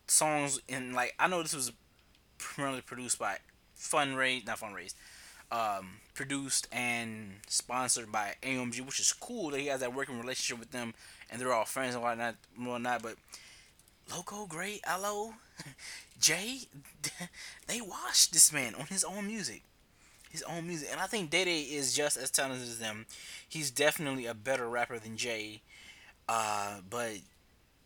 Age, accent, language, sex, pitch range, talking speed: 20-39, American, English, male, 110-140 Hz, 155 wpm